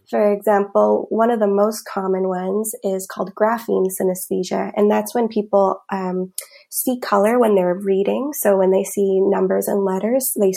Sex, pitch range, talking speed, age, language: female, 190-215 Hz, 170 wpm, 20-39, English